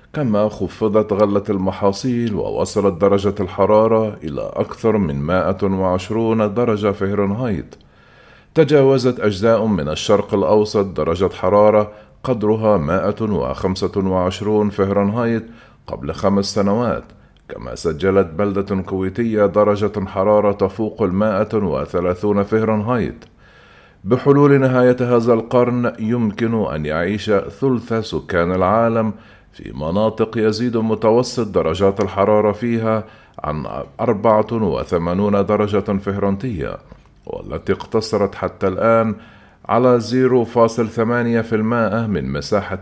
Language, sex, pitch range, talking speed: Arabic, male, 100-115 Hz, 95 wpm